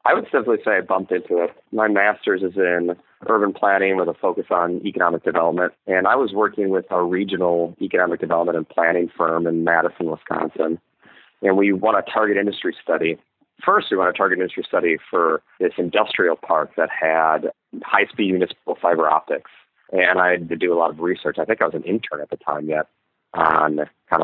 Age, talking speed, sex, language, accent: 30-49, 200 wpm, male, English, American